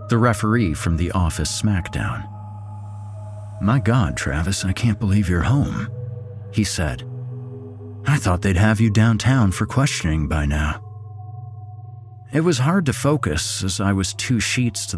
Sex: male